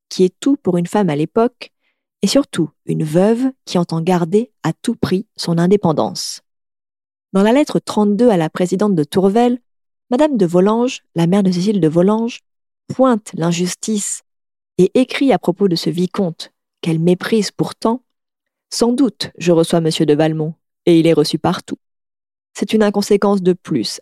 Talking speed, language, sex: 170 wpm, French, female